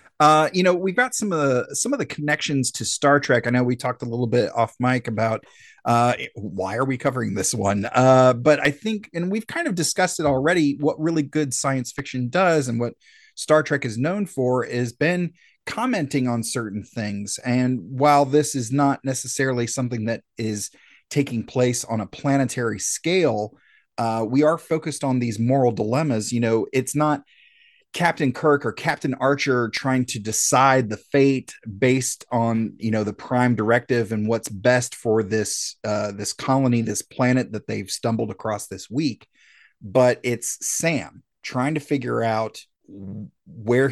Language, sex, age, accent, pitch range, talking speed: English, male, 30-49, American, 115-145 Hz, 180 wpm